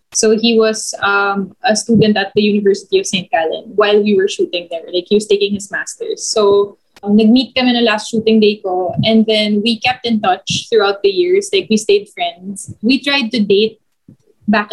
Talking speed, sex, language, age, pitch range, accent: 205 wpm, female, English, 20-39, 200-225 Hz, Filipino